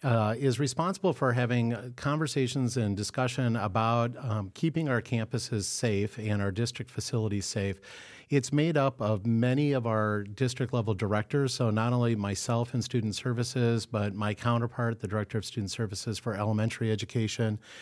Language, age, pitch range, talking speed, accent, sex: English, 40-59, 110-130 Hz, 155 wpm, American, male